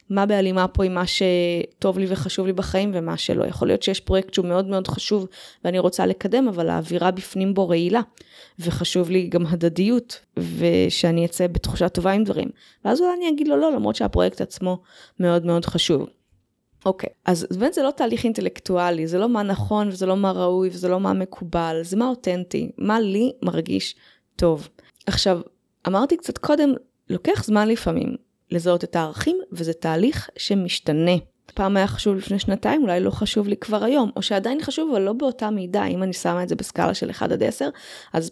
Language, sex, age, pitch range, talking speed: Hebrew, female, 20-39, 175-210 Hz, 185 wpm